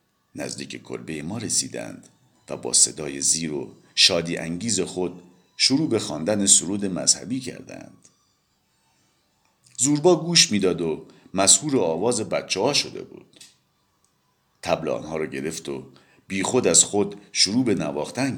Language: English